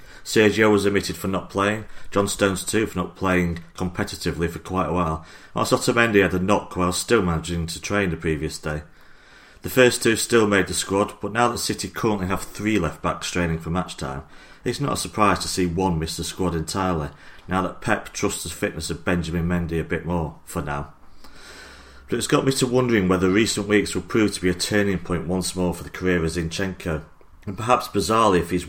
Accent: British